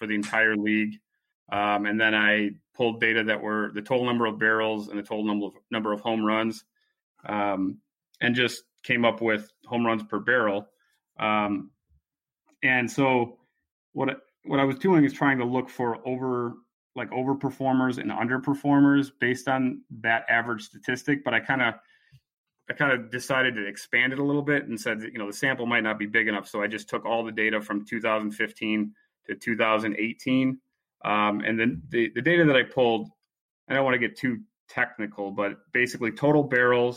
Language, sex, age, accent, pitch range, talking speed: English, male, 30-49, American, 105-125 Hz, 190 wpm